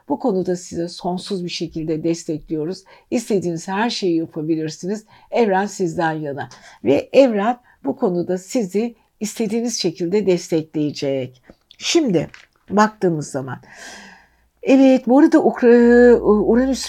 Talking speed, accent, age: 105 wpm, native, 60-79